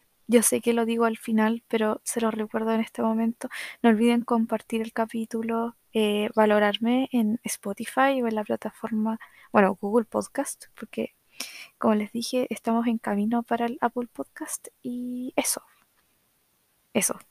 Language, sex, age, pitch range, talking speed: Spanish, female, 20-39, 205-235 Hz, 155 wpm